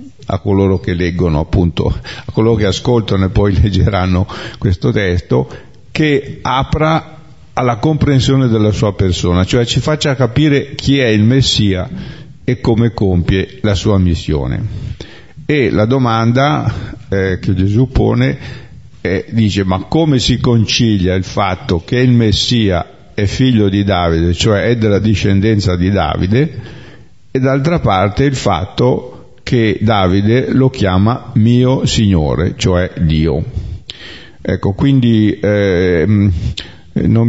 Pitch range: 95-120 Hz